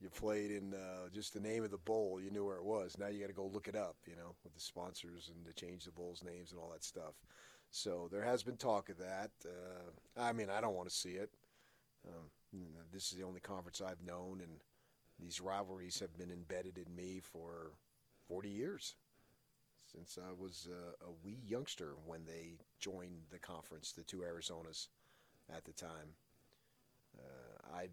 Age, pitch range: 40-59, 80-95 Hz